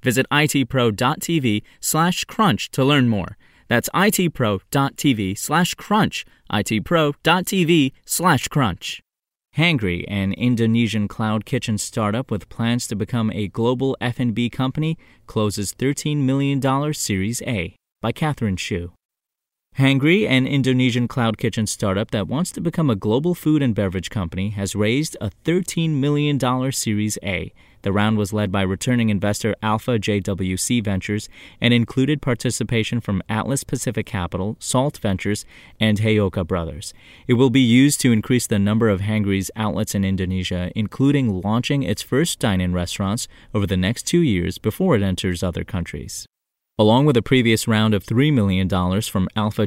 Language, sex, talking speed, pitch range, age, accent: English, male, 145 wpm, 100-130 Hz, 30-49, American